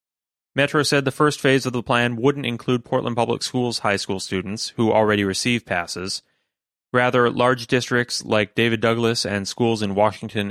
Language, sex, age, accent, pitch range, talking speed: English, male, 30-49, American, 105-130 Hz, 170 wpm